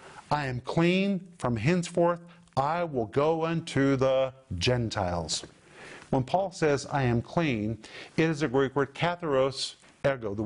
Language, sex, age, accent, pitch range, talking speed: English, male, 50-69, American, 130-170 Hz, 145 wpm